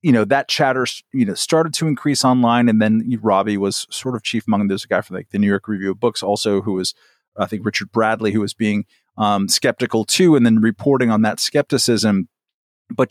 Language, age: English, 40-59